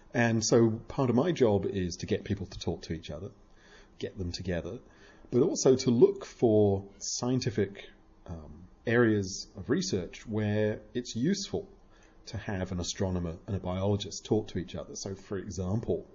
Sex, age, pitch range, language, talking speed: male, 40-59, 90-115 Hz, English, 165 wpm